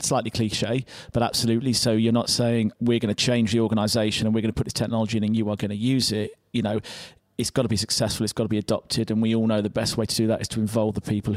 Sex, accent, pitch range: male, British, 110-120 Hz